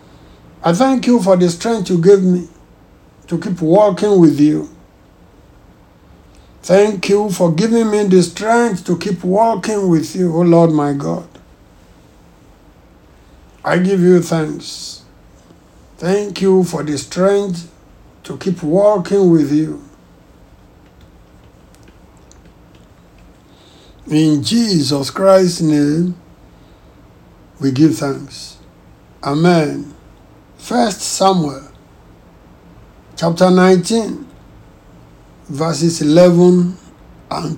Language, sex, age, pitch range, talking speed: English, male, 60-79, 150-195 Hz, 95 wpm